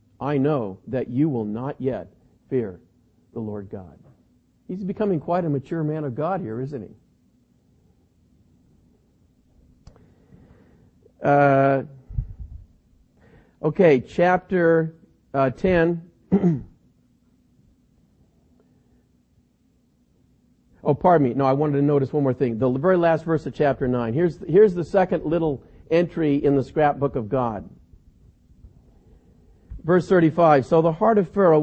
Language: English